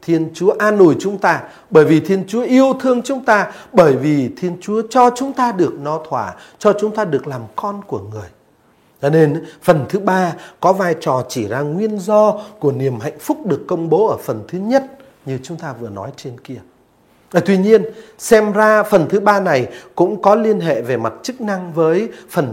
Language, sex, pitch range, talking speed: Vietnamese, male, 145-210 Hz, 215 wpm